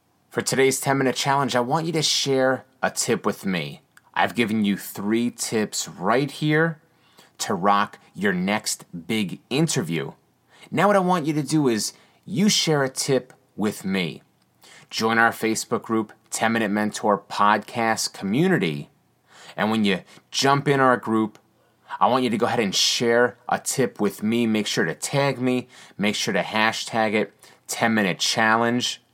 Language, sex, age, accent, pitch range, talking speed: English, male, 30-49, American, 105-135 Hz, 165 wpm